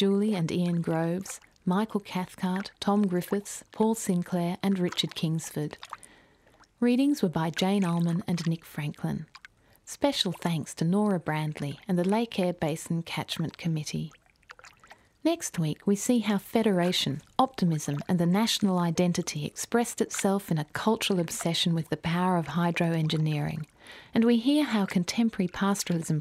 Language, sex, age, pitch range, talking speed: English, female, 40-59, 170-205 Hz, 140 wpm